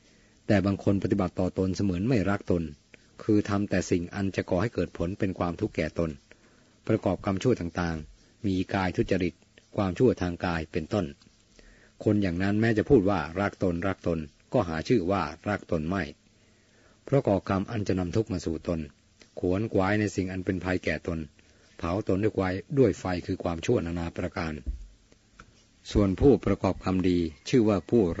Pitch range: 90-105 Hz